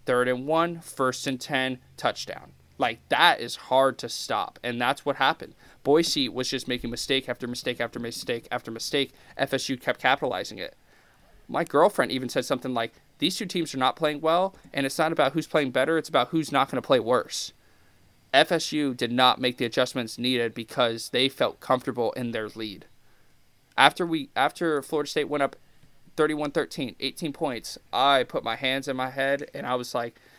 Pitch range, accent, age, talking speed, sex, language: 120-145 Hz, American, 20-39, 190 wpm, male, English